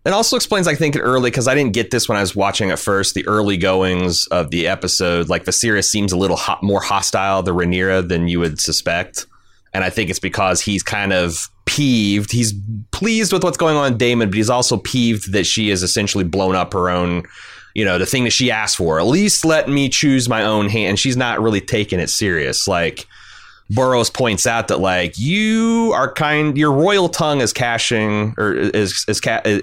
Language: English